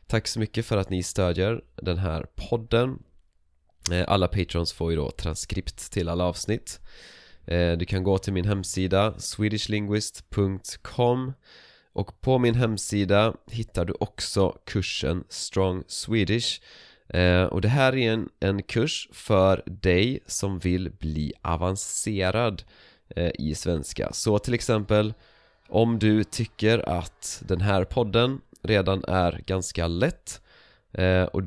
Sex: male